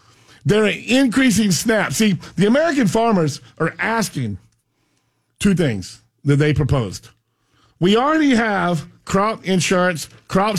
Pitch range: 125-190 Hz